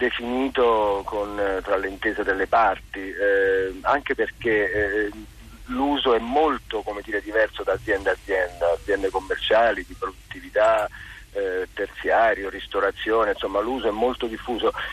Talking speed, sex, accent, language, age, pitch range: 130 wpm, male, native, Italian, 40-59, 110-130 Hz